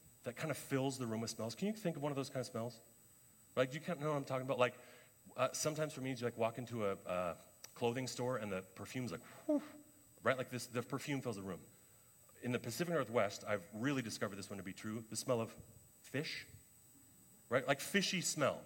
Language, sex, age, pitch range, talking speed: English, male, 30-49, 115-150 Hz, 235 wpm